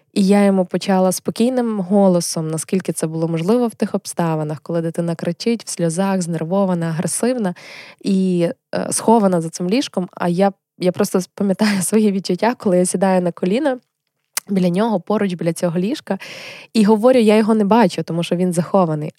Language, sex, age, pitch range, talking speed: Ukrainian, female, 20-39, 180-225 Hz, 165 wpm